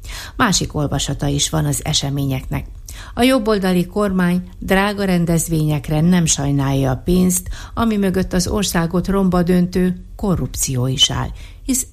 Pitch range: 145-185 Hz